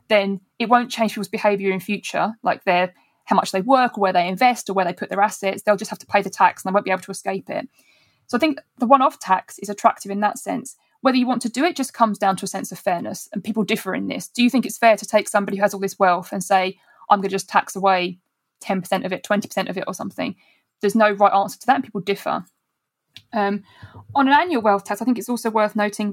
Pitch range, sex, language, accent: 195-240 Hz, female, English, British